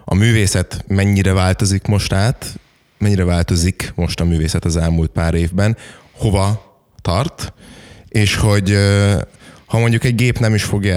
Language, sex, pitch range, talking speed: Hungarian, male, 80-100 Hz, 140 wpm